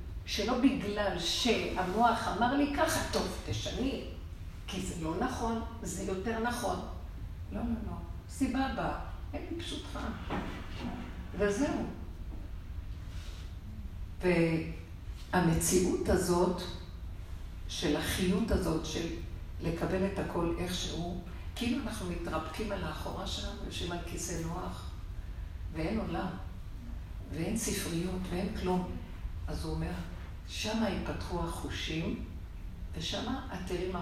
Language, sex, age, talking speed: Hebrew, female, 50-69, 105 wpm